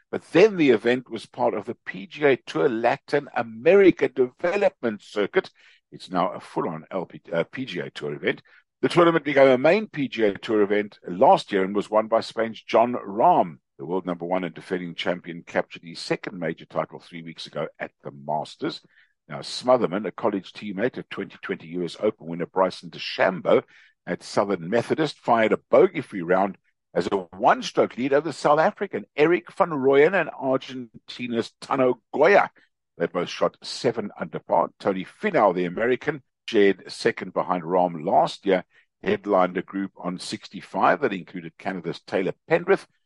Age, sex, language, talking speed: 60-79, male, English, 160 wpm